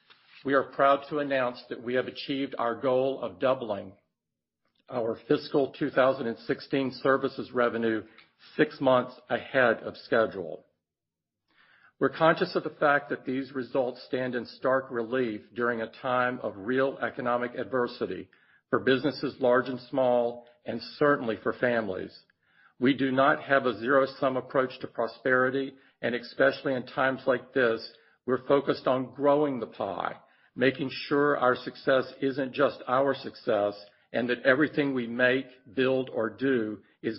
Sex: male